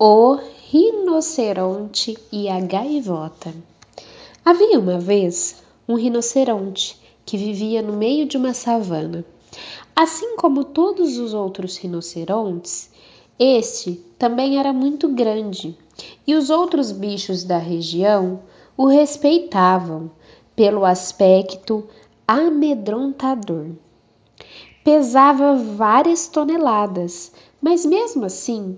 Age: 10-29